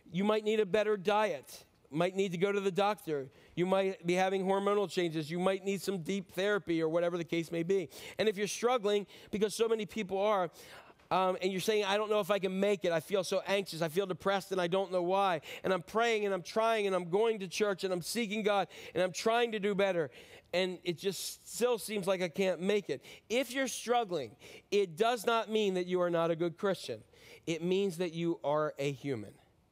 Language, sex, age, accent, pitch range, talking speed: English, male, 40-59, American, 180-215 Hz, 235 wpm